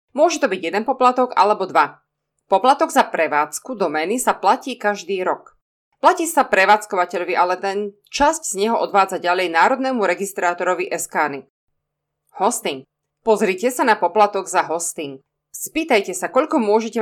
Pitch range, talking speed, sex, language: 175-235 Hz, 140 wpm, female, Slovak